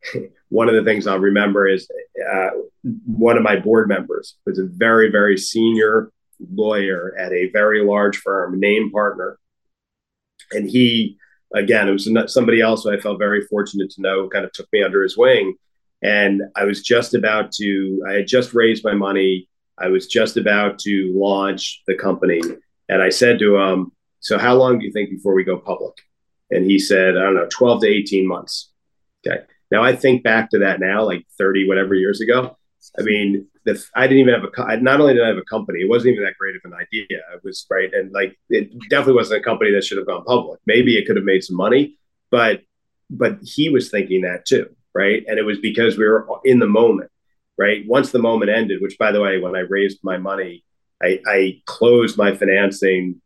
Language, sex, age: English, male, 30-49